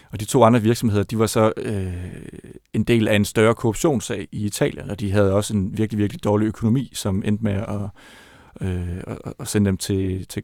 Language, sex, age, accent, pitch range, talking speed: Danish, male, 30-49, native, 100-115 Hz, 205 wpm